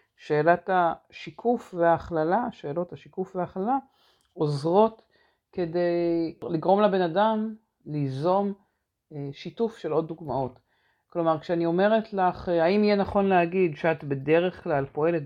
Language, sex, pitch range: Hebrew, female, 160-200 Hz